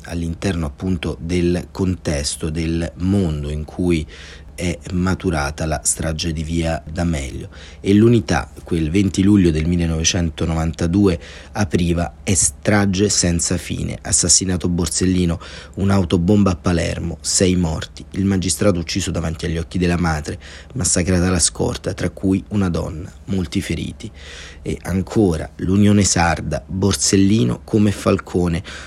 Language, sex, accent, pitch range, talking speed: Italian, male, native, 80-95 Hz, 120 wpm